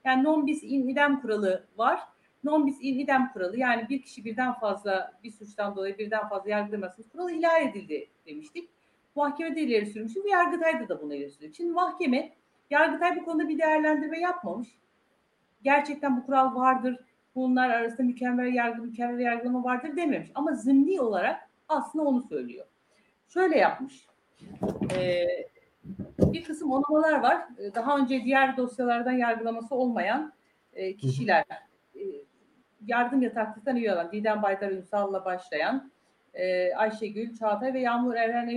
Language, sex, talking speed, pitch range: German, female, 130 wpm, 220-305 Hz